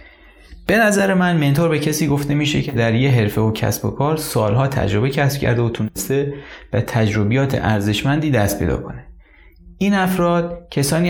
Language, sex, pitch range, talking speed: Persian, male, 110-155 Hz, 170 wpm